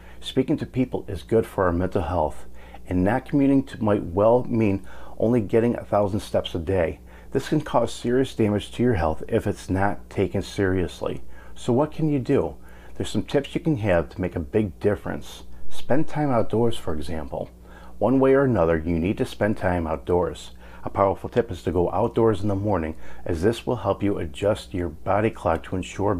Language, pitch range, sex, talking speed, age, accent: English, 80-115 Hz, male, 200 wpm, 40-59, American